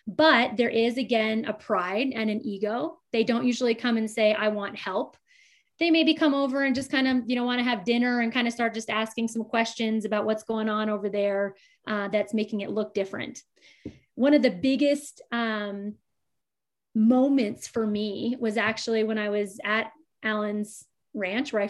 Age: 30-49